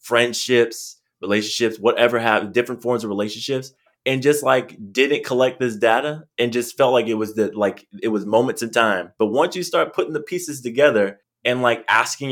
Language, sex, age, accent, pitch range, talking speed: English, male, 20-39, American, 110-150 Hz, 190 wpm